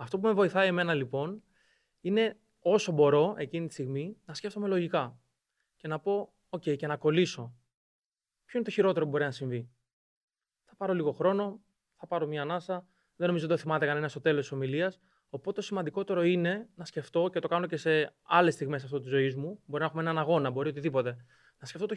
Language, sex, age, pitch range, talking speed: Greek, male, 20-39, 140-180 Hz, 210 wpm